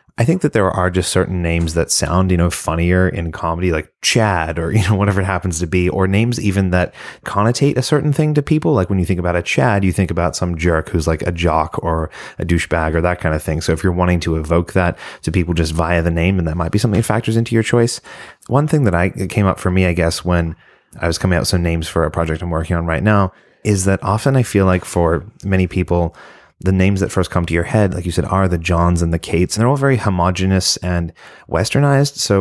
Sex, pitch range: male, 85-100 Hz